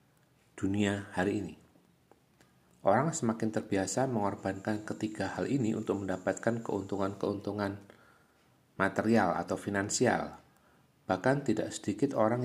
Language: Malay